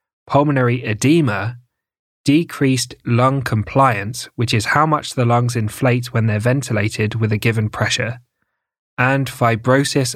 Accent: British